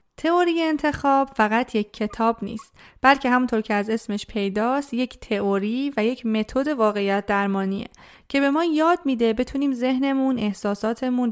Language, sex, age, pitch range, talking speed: Persian, female, 30-49, 215-265 Hz, 145 wpm